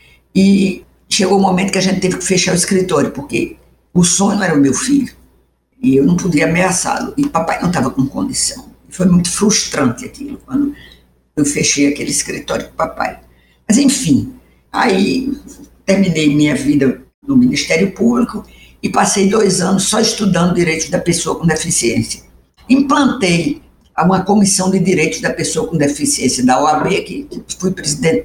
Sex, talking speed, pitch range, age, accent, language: female, 160 wpm, 155-220 Hz, 60-79, Brazilian, Portuguese